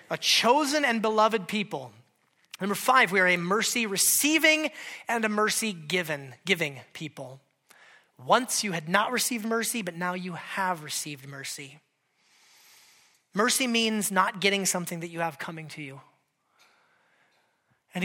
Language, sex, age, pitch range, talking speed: English, male, 30-49, 170-225 Hz, 135 wpm